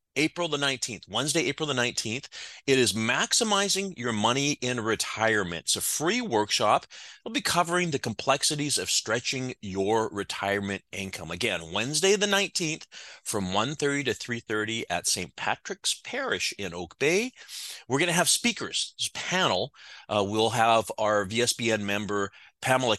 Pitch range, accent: 105-175 Hz, American